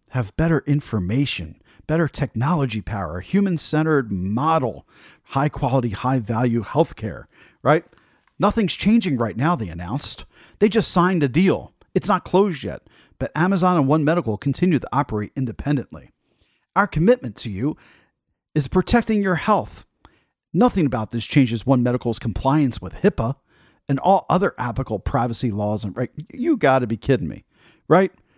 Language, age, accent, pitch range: English, 40-59, American, 120-160 Hz